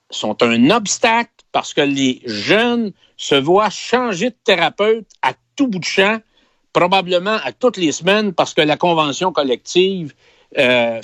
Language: French